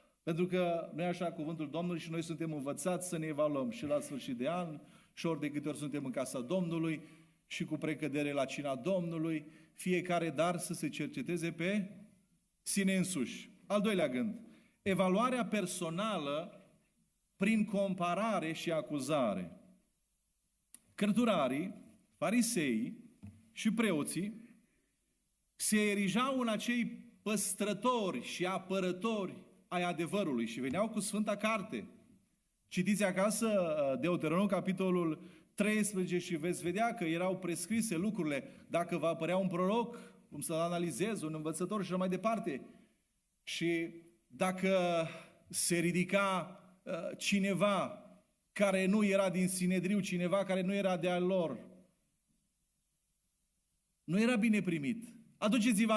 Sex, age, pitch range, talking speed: male, 40-59, 170-215 Hz, 125 wpm